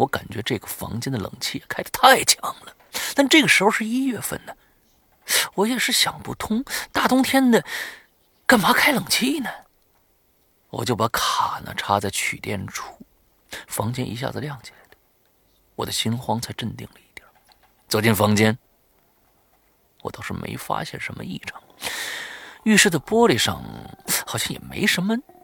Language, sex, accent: Chinese, male, native